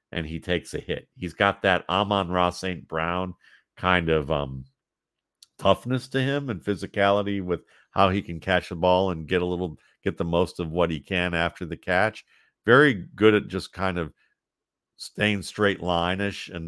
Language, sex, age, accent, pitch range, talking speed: English, male, 50-69, American, 80-100 Hz, 185 wpm